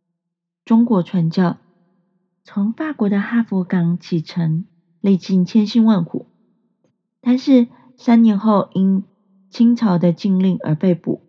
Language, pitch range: Chinese, 170-200 Hz